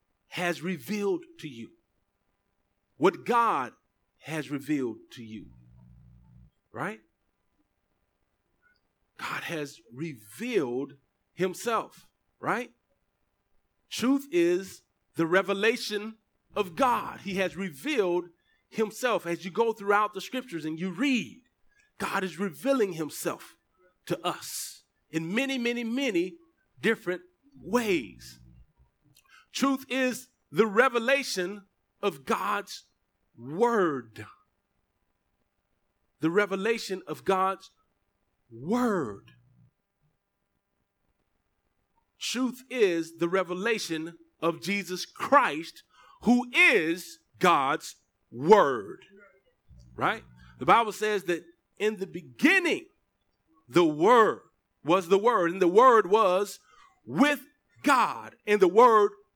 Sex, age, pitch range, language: male, 50-69, 160-250 Hz, English